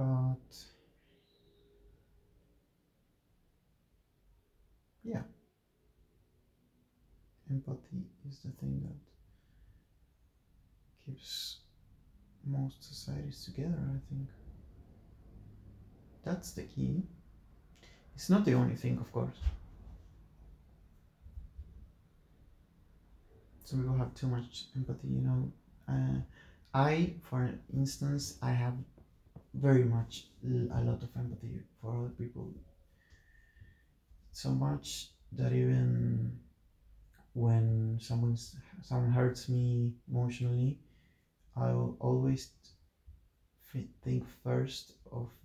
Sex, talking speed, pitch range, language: male, 85 wpm, 80-125 Hz, Spanish